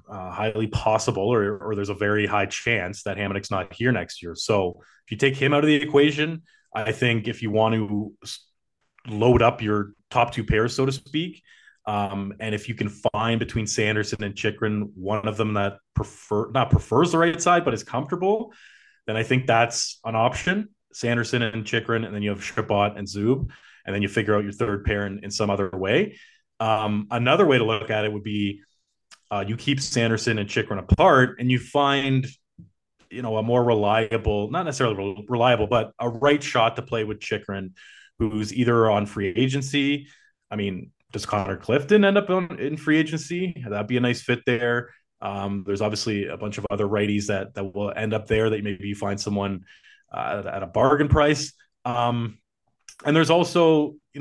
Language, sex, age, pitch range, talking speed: English, male, 30-49, 105-130 Hz, 195 wpm